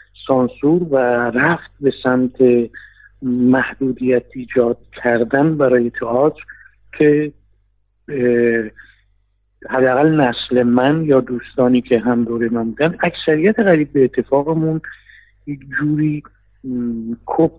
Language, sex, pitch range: Persian, male, 120-155 Hz